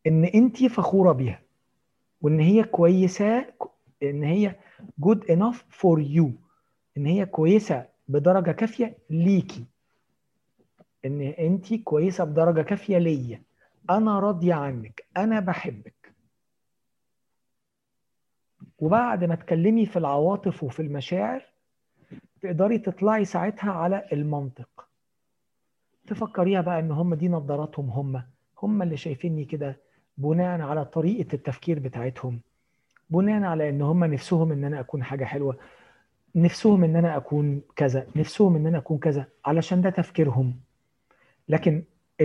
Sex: male